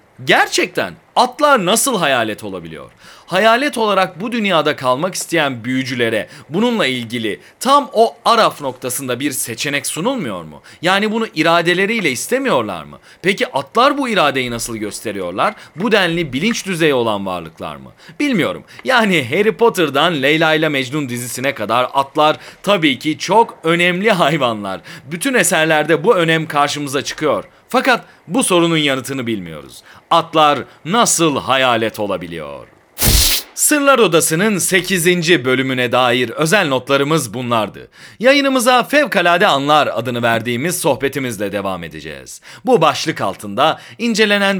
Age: 40-59